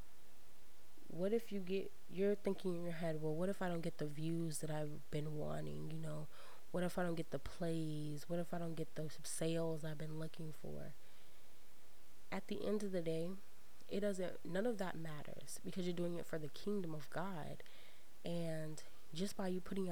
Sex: female